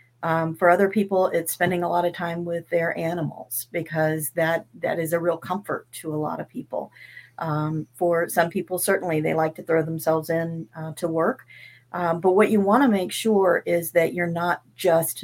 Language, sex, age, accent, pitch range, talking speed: English, female, 50-69, American, 160-185 Hz, 205 wpm